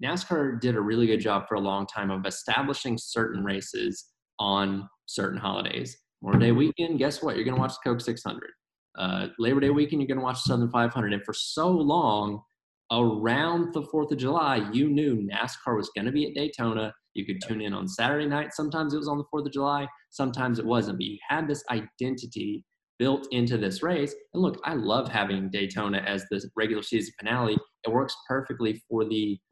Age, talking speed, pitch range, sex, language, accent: 20-39, 205 wpm, 105-135 Hz, male, English, American